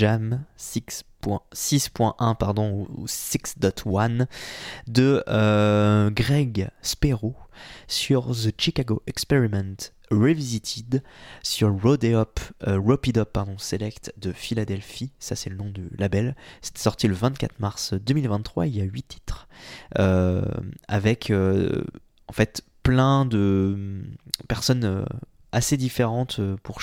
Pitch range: 100-120 Hz